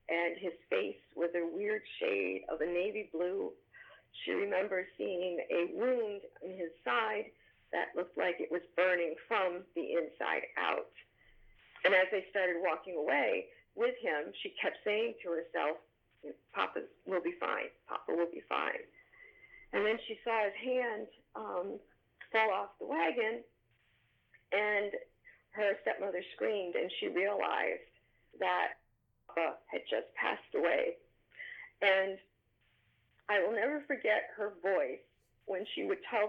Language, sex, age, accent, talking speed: English, female, 50-69, American, 140 wpm